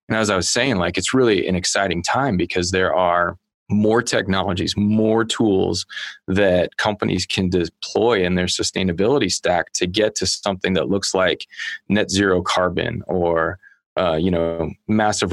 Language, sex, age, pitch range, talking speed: English, male, 20-39, 85-100 Hz, 160 wpm